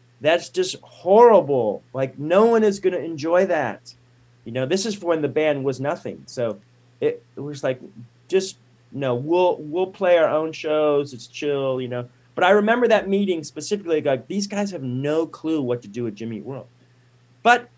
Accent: American